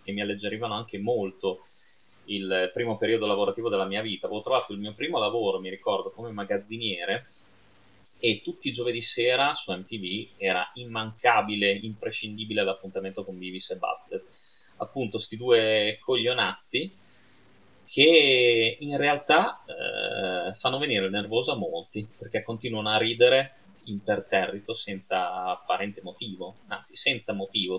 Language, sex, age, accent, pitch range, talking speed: Italian, male, 30-49, native, 100-130 Hz, 130 wpm